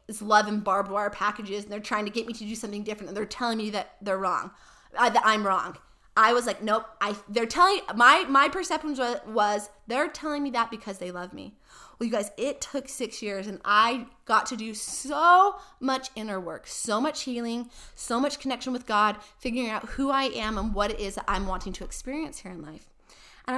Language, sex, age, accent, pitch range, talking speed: English, female, 20-39, American, 200-255 Hz, 220 wpm